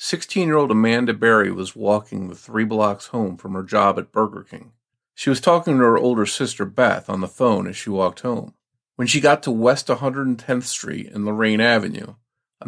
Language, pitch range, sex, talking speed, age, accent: English, 105-130 Hz, male, 195 wpm, 40-59, American